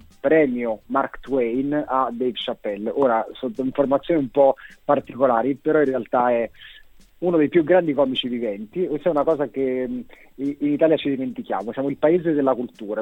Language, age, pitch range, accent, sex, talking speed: Italian, 30-49, 125-160 Hz, native, male, 165 wpm